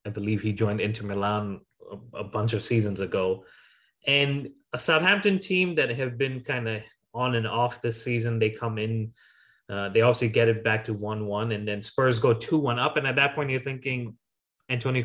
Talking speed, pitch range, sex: 205 wpm, 110-130 Hz, male